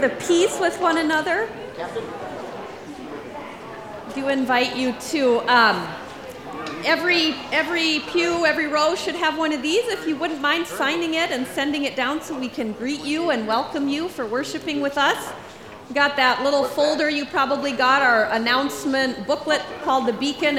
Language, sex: English, female